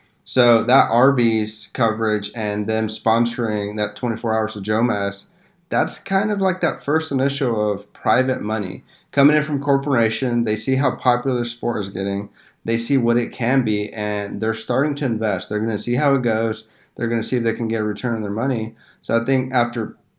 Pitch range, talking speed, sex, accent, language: 105-125 Hz, 210 wpm, male, American, English